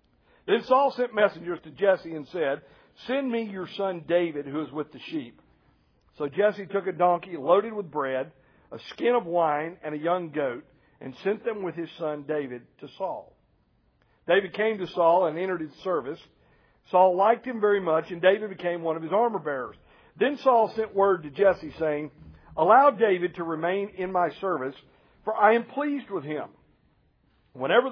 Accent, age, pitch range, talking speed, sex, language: American, 50-69, 155-210 Hz, 185 wpm, male, English